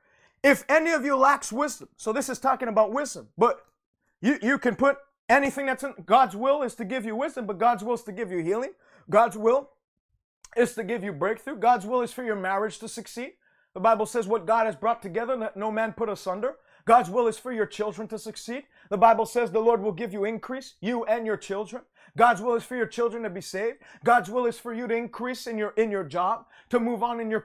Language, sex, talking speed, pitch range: English, male, 240 wpm, 220-260 Hz